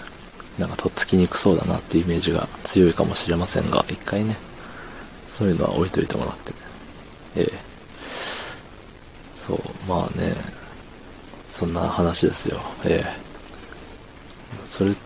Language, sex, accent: Japanese, male, native